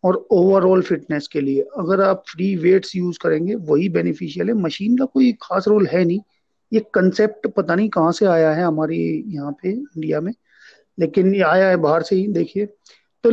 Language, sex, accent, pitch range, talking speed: Hindi, male, native, 165-210 Hz, 175 wpm